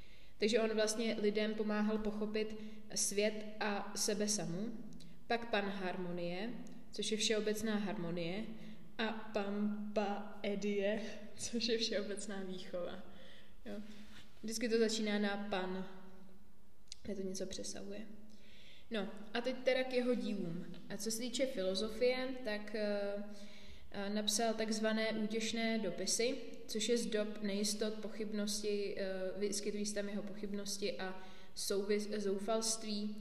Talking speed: 115 wpm